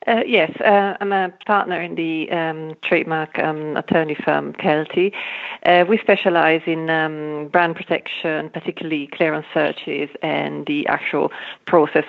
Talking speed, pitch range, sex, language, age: 140 wpm, 150-175 Hz, female, English, 40-59